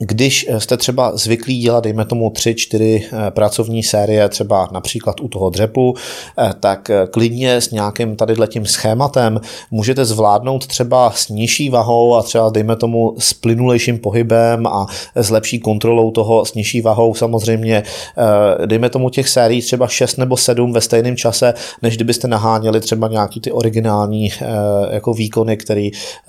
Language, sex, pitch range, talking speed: Czech, male, 105-120 Hz, 145 wpm